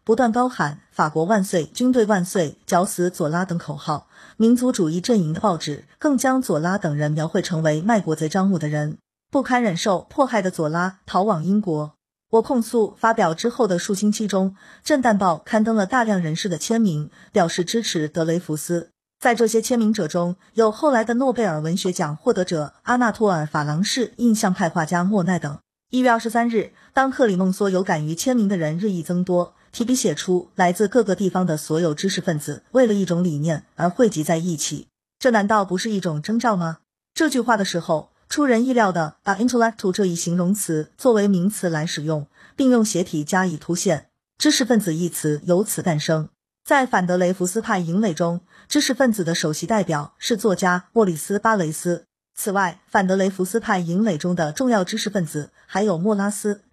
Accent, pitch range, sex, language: native, 165-225 Hz, female, Chinese